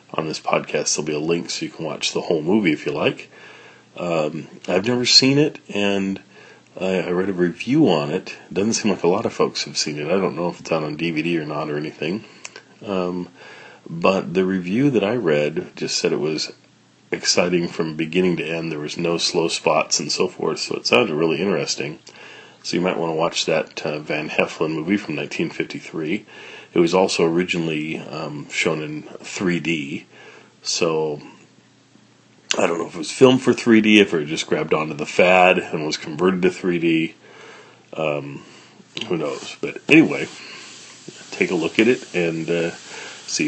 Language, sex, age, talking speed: English, male, 40-59, 190 wpm